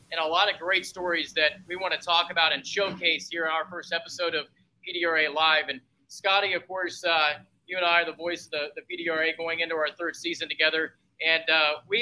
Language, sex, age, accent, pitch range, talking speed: English, male, 20-39, American, 155-180 Hz, 230 wpm